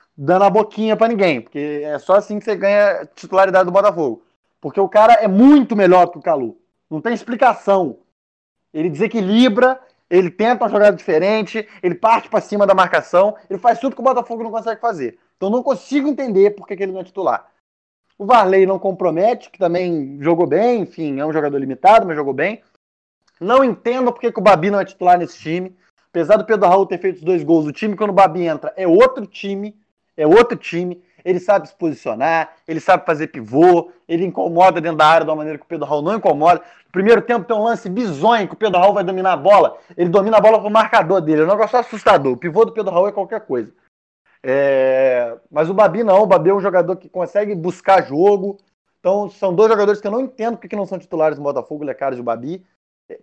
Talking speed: 225 wpm